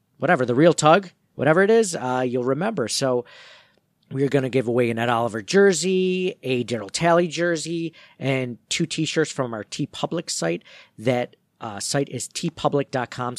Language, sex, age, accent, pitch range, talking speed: English, male, 40-59, American, 115-140 Hz, 165 wpm